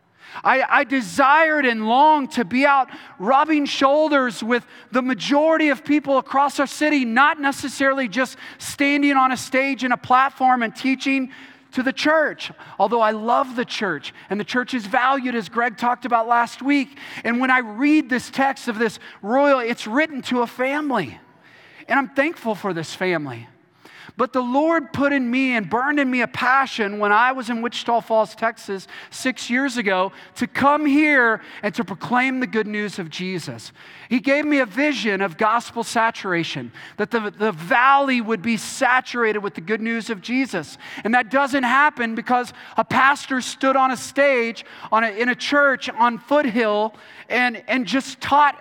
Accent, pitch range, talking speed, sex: American, 225-275 Hz, 175 wpm, male